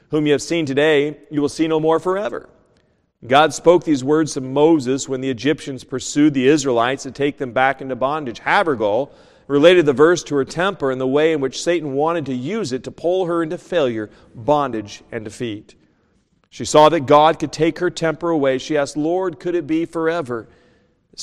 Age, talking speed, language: 40-59, 200 wpm, English